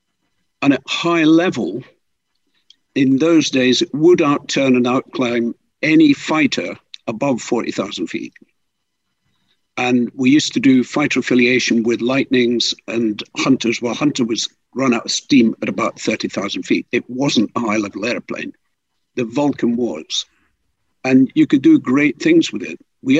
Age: 60-79